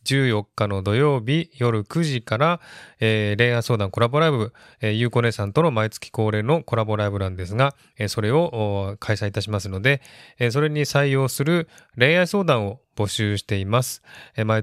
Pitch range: 105-135 Hz